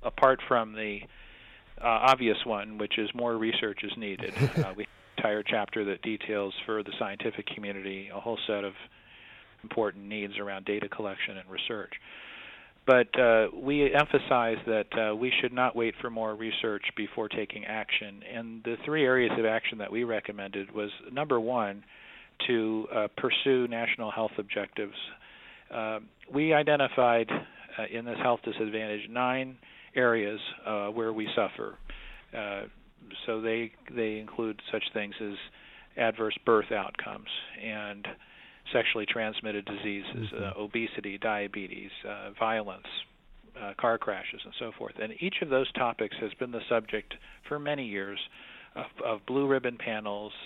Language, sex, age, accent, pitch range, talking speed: English, male, 40-59, American, 105-120 Hz, 150 wpm